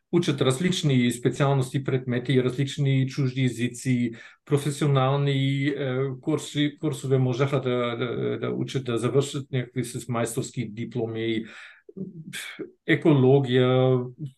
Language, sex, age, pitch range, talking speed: Bulgarian, male, 50-69, 125-160 Hz, 70 wpm